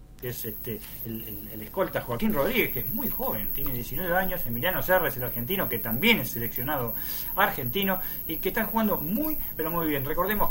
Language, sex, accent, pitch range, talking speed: Spanish, male, Argentinian, 125-180 Hz, 195 wpm